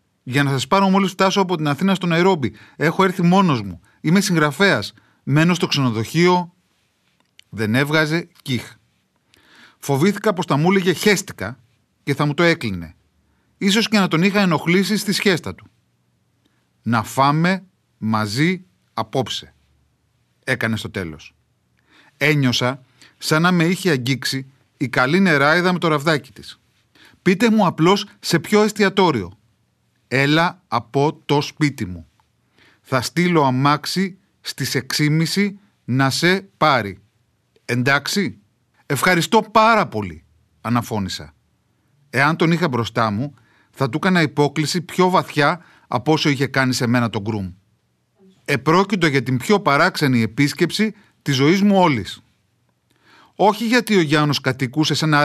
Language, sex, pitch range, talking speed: Greek, male, 115-180 Hz, 135 wpm